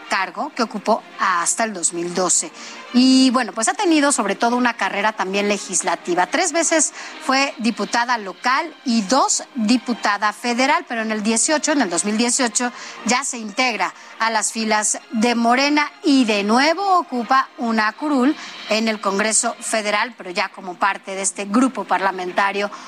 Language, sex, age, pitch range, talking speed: Spanish, female, 30-49, 210-265 Hz, 155 wpm